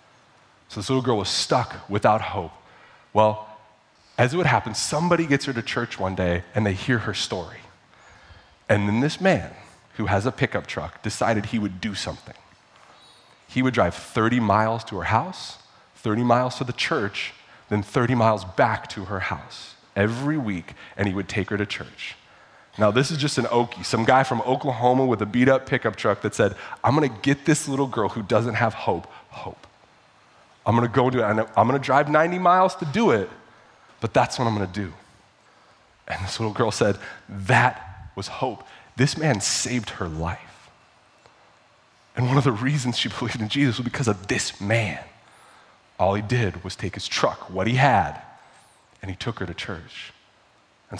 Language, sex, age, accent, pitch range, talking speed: English, male, 30-49, American, 100-130 Hz, 190 wpm